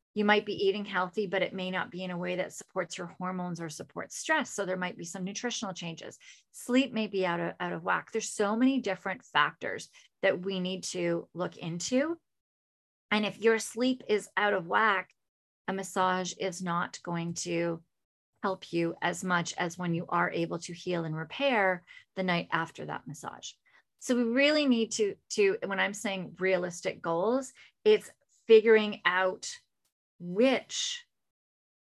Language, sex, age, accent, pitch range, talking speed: English, female, 30-49, American, 170-210 Hz, 175 wpm